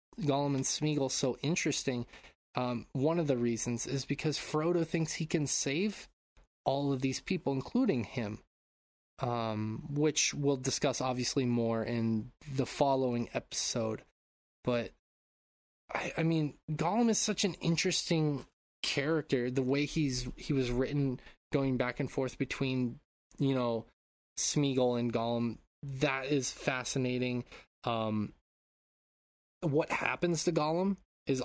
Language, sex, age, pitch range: English, male, 20-39, 120-145 Hz